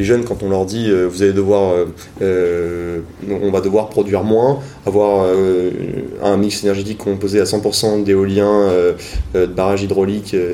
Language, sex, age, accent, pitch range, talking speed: French, male, 20-39, French, 90-115 Hz, 170 wpm